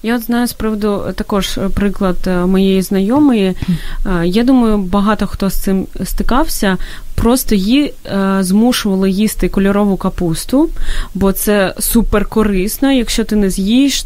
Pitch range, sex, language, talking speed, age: 190-230 Hz, female, Ukrainian, 125 wpm, 20-39